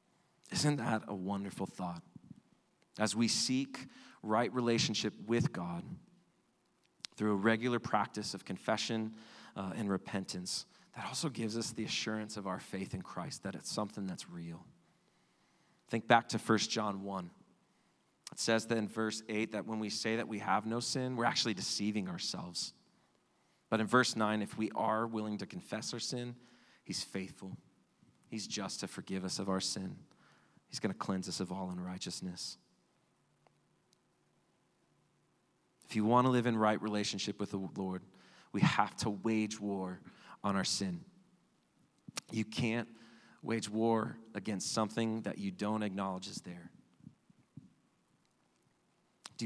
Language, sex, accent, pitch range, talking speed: English, male, American, 100-115 Hz, 150 wpm